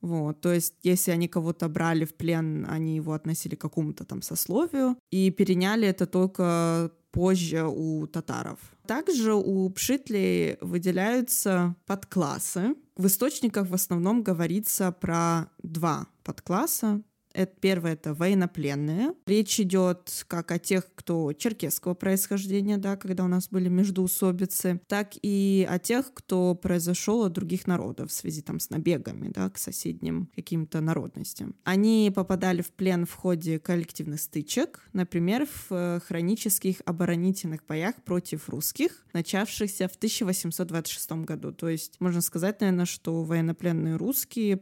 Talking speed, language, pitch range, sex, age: 135 wpm, Russian, 165-195 Hz, female, 20-39